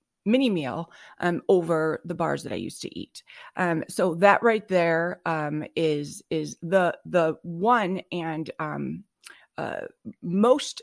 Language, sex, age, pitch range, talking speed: English, female, 30-49, 165-195 Hz, 145 wpm